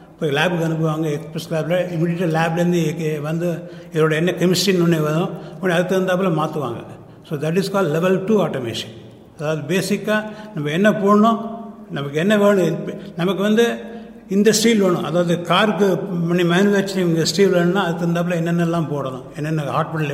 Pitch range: 155-190 Hz